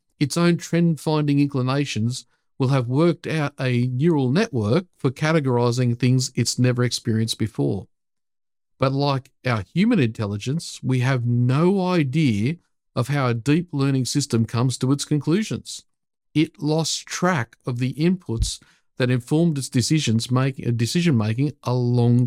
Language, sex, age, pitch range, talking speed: English, male, 50-69, 120-150 Hz, 135 wpm